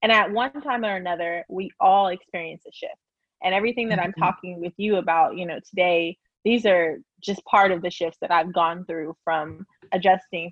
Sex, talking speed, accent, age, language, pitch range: female, 200 wpm, American, 20-39, English, 170-205 Hz